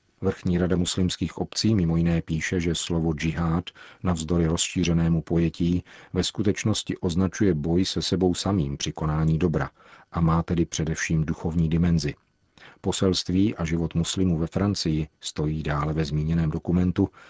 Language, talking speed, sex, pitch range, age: Czech, 140 wpm, male, 80-95 Hz, 40-59